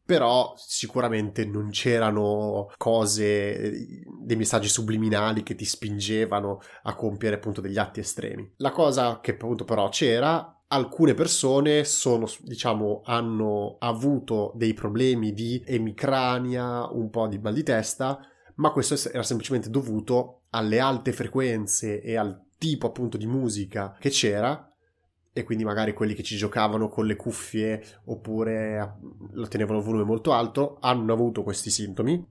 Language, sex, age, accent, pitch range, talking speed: Italian, male, 20-39, native, 100-120 Hz, 140 wpm